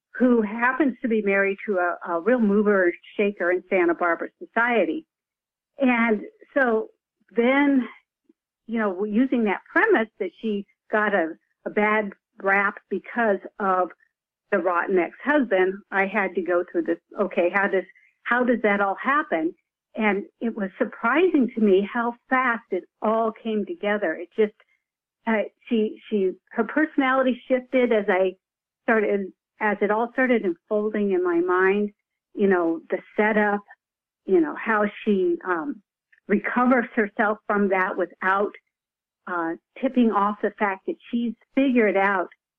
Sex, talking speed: female, 145 wpm